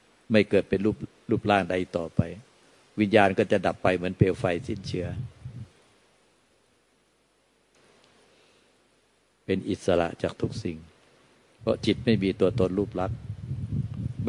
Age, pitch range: 60-79, 95-115 Hz